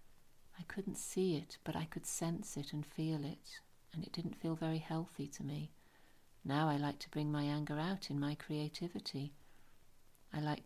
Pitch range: 145-175 Hz